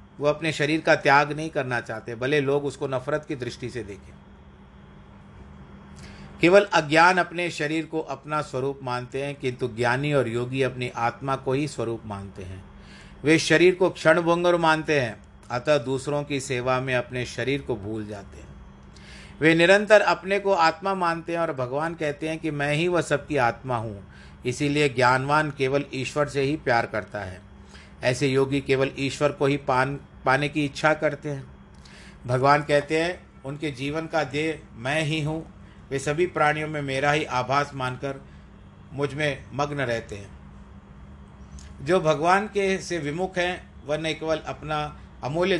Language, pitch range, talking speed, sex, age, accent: Hindi, 115-155 Hz, 165 wpm, male, 50-69, native